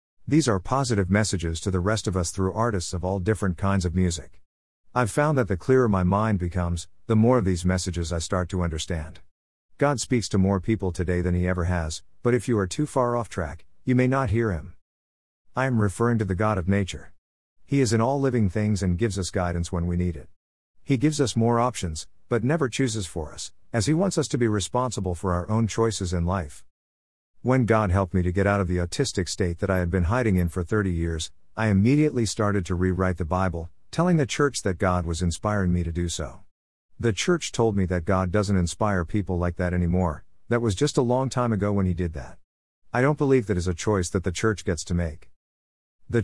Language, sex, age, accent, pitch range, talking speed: English, male, 50-69, American, 85-115 Hz, 230 wpm